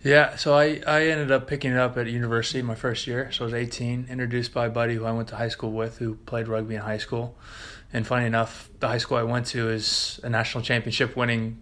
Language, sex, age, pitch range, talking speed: English, male, 20-39, 110-120 Hz, 250 wpm